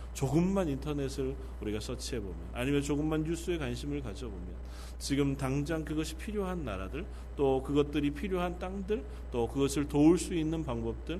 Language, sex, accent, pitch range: Korean, male, native, 105-135 Hz